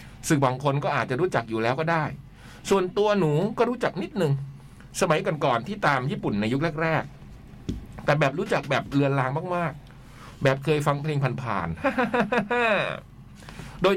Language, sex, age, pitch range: Thai, male, 60-79, 115-155 Hz